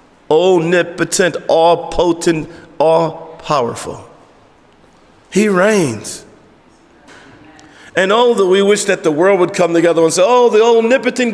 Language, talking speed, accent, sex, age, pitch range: English, 120 wpm, American, male, 50-69, 165-220 Hz